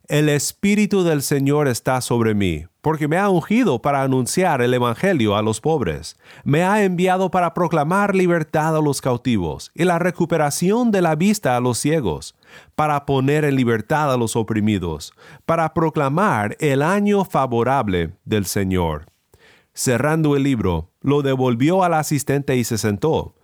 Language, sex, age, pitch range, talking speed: Spanish, male, 40-59, 115-160 Hz, 155 wpm